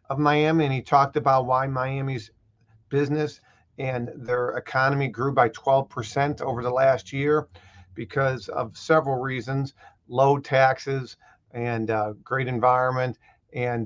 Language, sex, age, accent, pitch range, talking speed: English, male, 40-59, American, 115-140 Hz, 135 wpm